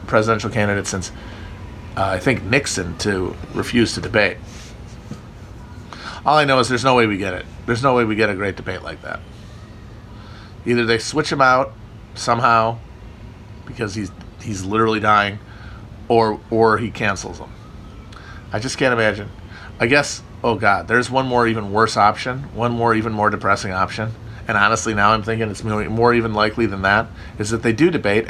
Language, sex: English, male